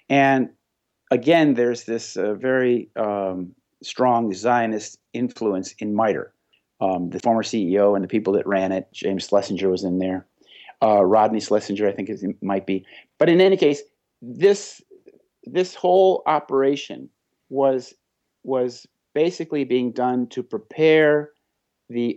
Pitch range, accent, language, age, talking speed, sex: 105-140 Hz, American, English, 50-69, 140 wpm, male